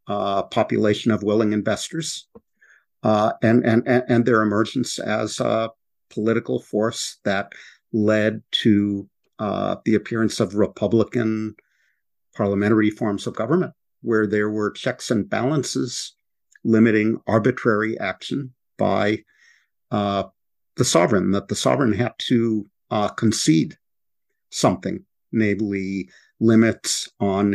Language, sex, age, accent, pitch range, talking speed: English, male, 50-69, American, 100-115 Hz, 110 wpm